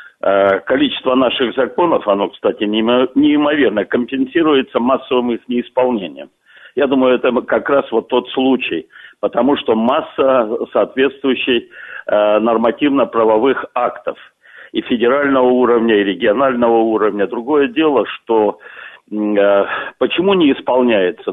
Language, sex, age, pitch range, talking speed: Russian, male, 60-79, 115-150 Hz, 100 wpm